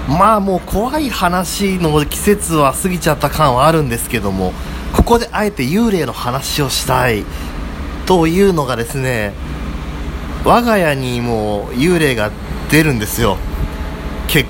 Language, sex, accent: Japanese, male, native